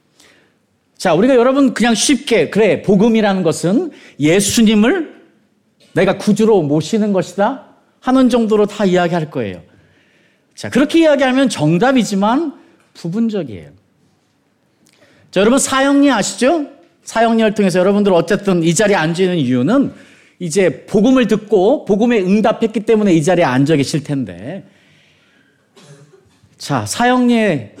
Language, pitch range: Korean, 160-240 Hz